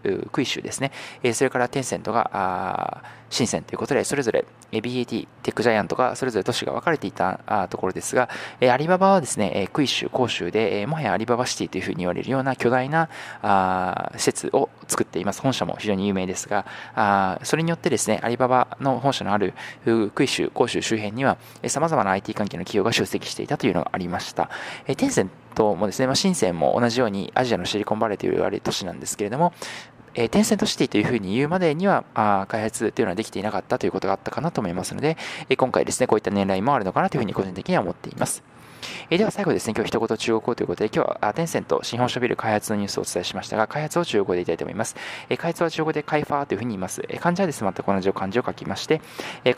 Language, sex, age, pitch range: Japanese, male, 20-39, 100-140 Hz